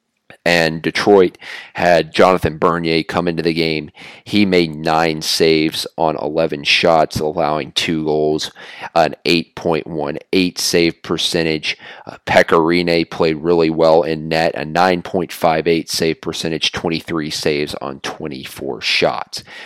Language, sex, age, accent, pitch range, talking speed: English, male, 40-59, American, 85-95 Hz, 120 wpm